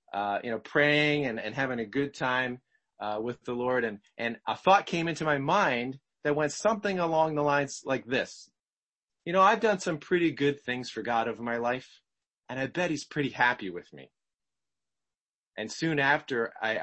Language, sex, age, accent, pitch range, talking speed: English, male, 30-49, American, 110-150 Hz, 195 wpm